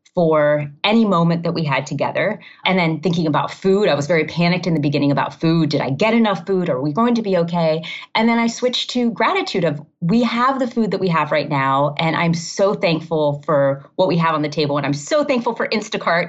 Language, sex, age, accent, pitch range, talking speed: English, female, 30-49, American, 145-195 Hz, 240 wpm